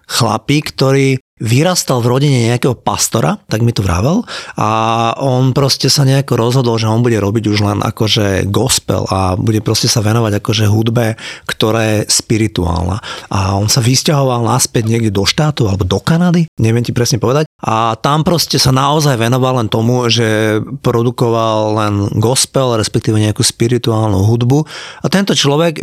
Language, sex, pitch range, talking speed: Slovak, male, 110-135 Hz, 160 wpm